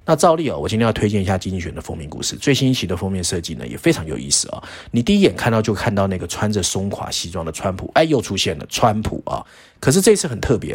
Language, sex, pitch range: Chinese, male, 90-120 Hz